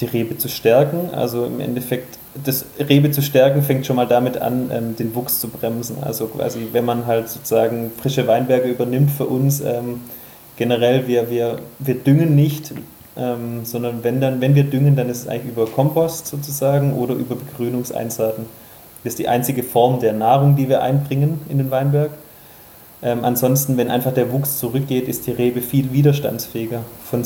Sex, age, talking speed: male, 20-39, 175 wpm